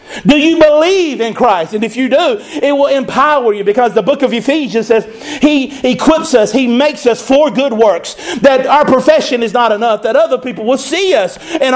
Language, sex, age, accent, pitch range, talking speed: English, male, 50-69, American, 220-280 Hz, 210 wpm